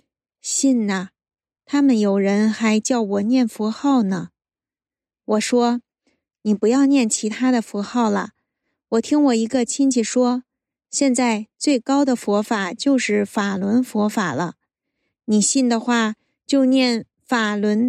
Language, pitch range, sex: Chinese, 215-255 Hz, female